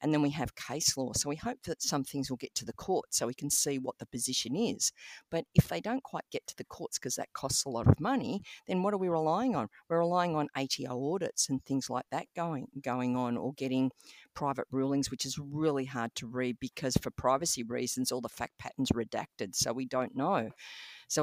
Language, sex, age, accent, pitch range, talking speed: English, female, 50-69, Australian, 130-160 Hz, 235 wpm